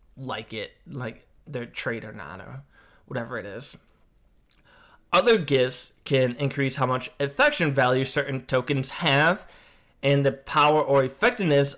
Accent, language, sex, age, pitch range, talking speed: American, English, male, 20-39, 125-140 Hz, 140 wpm